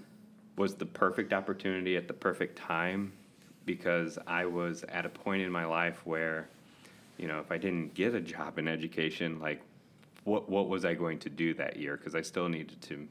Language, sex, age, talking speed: English, male, 30-49, 195 wpm